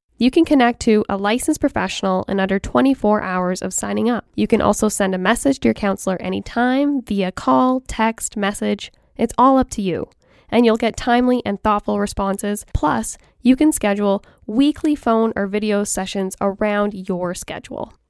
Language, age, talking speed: English, 10-29, 170 wpm